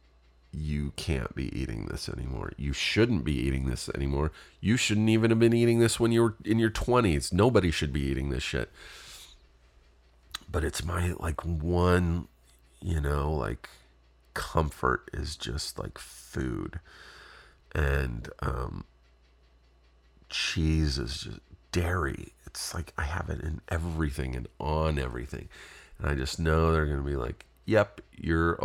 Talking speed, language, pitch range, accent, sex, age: 150 wpm, English, 65-85 Hz, American, male, 40-59